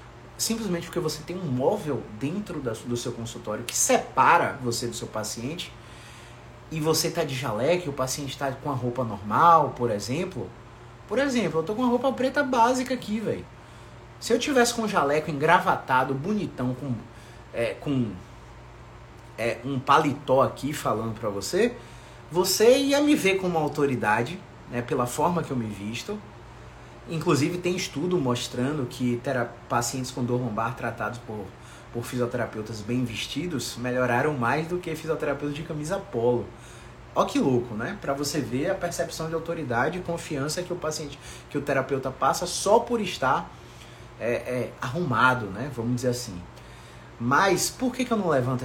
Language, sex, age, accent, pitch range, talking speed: Portuguese, male, 30-49, Brazilian, 120-170 Hz, 165 wpm